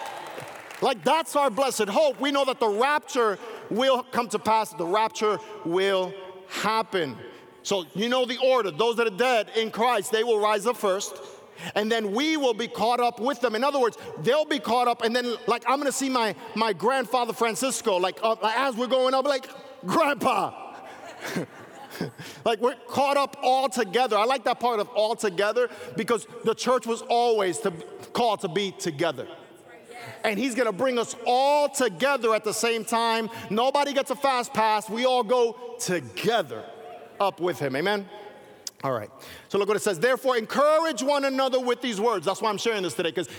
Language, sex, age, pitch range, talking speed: English, male, 50-69, 200-255 Hz, 190 wpm